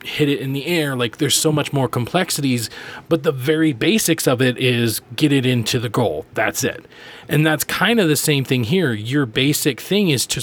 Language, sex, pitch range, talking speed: English, male, 120-150 Hz, 220 wpm